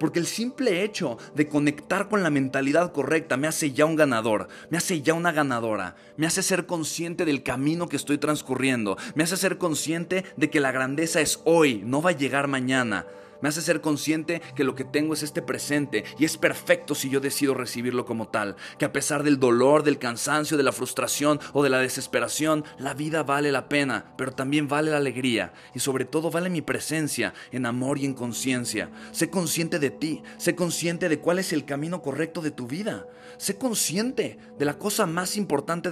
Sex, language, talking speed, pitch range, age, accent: male, Spanish, 200 wpm, 130-165 Hz, 30-49, Mexican